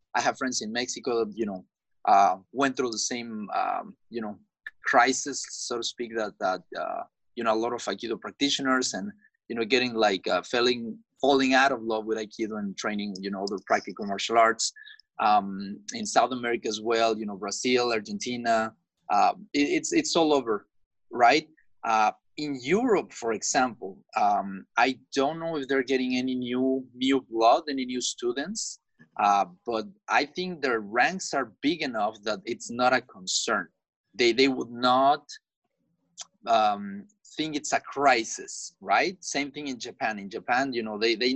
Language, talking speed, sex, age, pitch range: English, 175 wpm, male, 30-49, 115-150 Hz